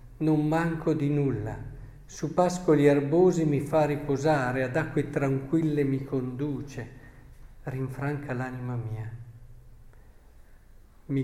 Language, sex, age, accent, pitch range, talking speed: Italian, male, 50-69, native, 125-160 Hz, 100 wpm